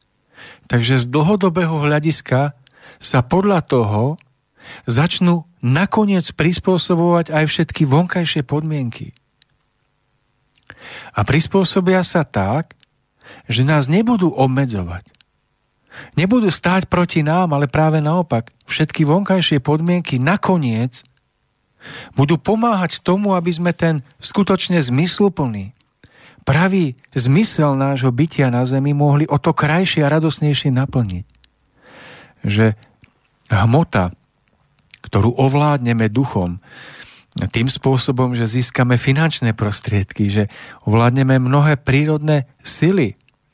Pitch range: 125-165 Hz